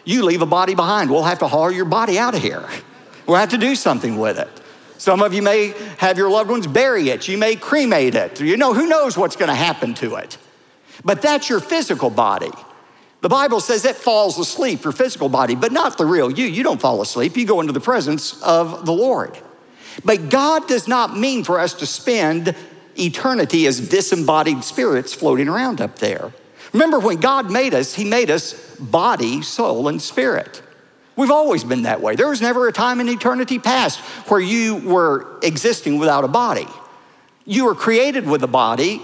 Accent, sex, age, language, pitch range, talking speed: American, male, 50-69, English, 185-260 Hz, 200 wpm